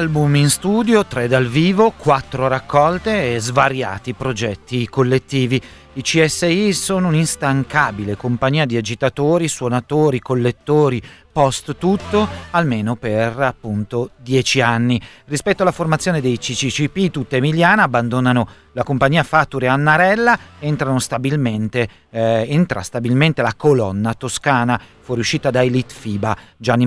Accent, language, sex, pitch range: native, Italian, male, 120-155 Hz